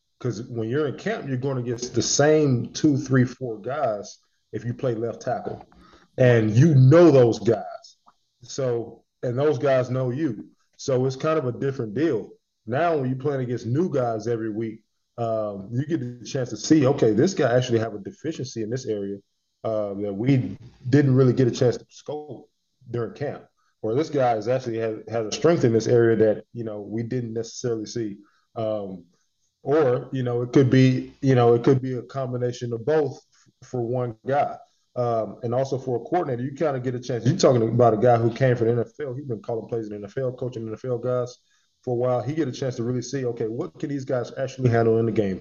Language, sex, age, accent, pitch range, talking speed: English, male, 20-39, American, 115-135 Hz, 220 wpm